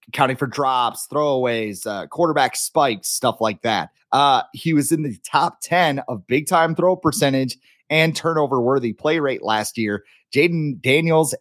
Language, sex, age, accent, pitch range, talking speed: English, male, 30-49, American, 125-170 Hz, 155 wpm